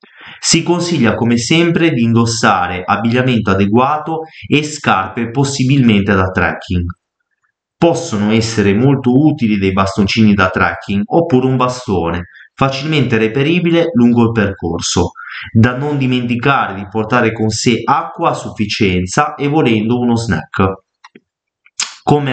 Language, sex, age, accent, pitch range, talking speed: Italian, male, 30-49, native, 105-135 Hz, 120 wpm